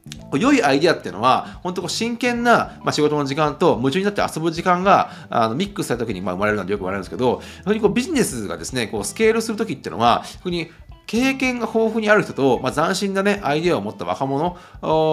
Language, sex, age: Japanese, male, 30-49